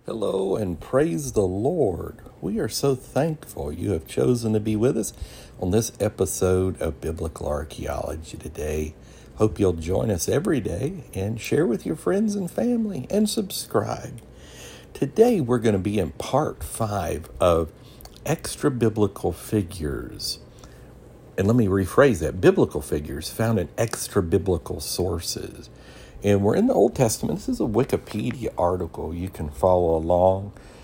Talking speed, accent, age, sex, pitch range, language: 145 wpm, American, 60-79, male, 85-115 Hz, English